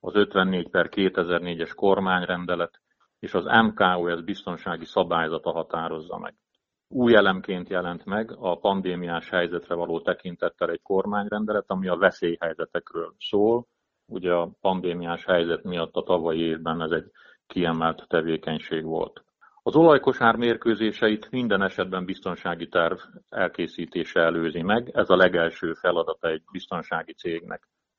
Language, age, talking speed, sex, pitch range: Hungarian, 50-69, 120 wpm, male, 85-110 Hz